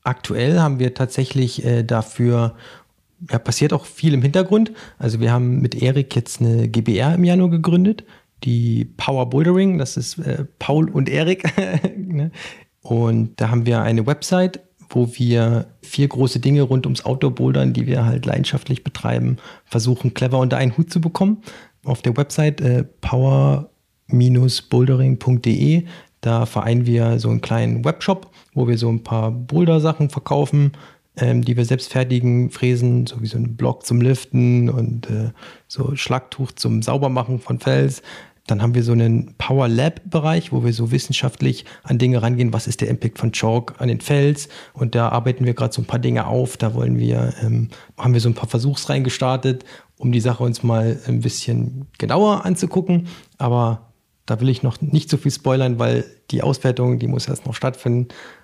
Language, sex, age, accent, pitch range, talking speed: German, male, 40-59, German, 115-145 Hz, 170 wpm